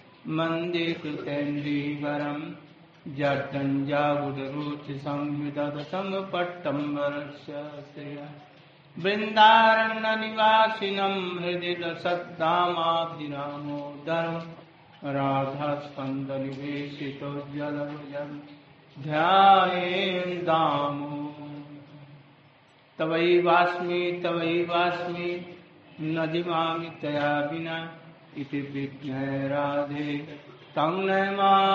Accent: Indian